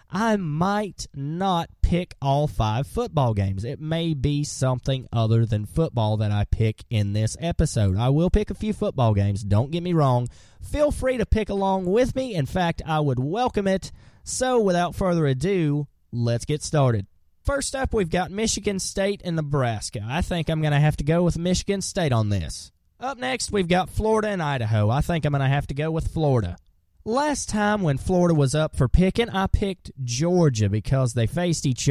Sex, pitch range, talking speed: male, 120-185 Hz, 195 wpm